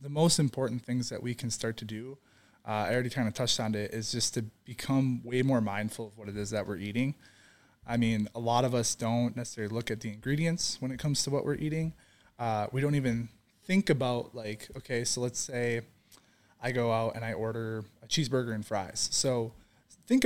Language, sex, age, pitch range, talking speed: English, male, 20-39, 115-145 Hz, 220 wpm